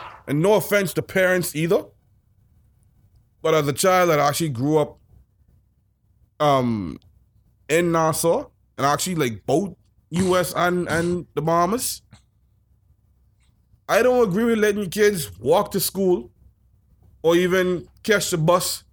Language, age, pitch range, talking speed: English, 20-39, 125-185 Hz, 125 wpm